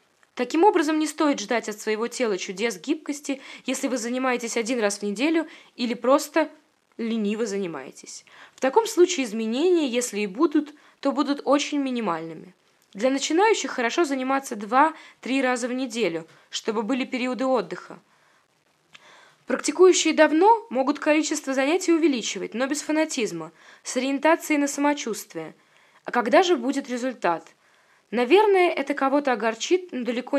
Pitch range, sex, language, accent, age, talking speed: 225-295 Hz, female, Russian, native, 20-39, 135 wpm